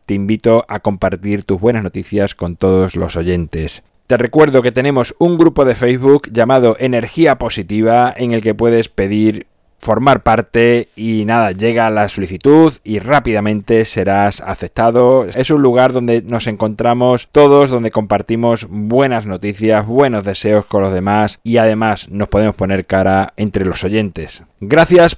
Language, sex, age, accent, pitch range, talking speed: Spanish, male, 20-39, Spanish, 100-125 Hz, 155 wpm